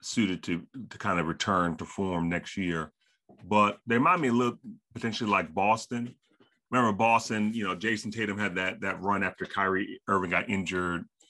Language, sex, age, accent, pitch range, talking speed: English, male, 30-49, American, 90-105 Hz, 175 wpm